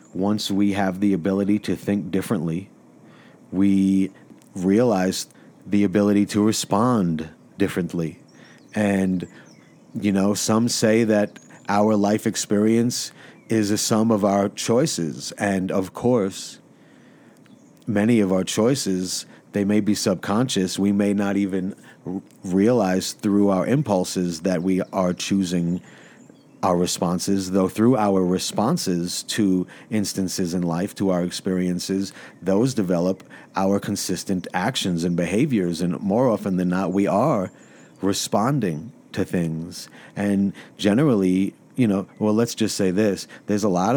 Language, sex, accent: English, male, American